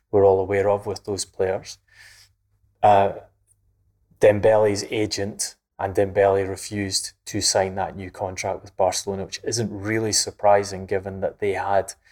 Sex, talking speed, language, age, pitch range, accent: male, 135 wpm, English, 20-39, 95-100 Hz, British